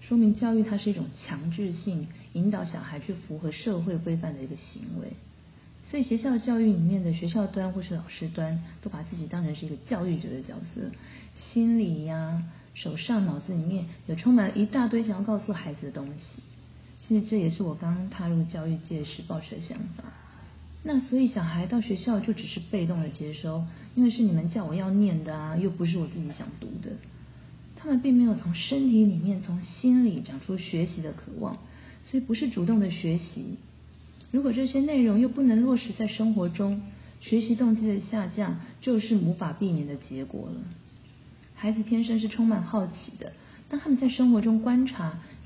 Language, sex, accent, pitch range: Chinese, female, native, 170-225 Hz